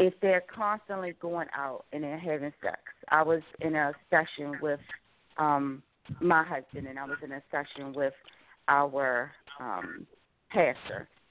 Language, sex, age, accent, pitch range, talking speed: English, female, 40-59, American, 140-160 Hz, 150 wpm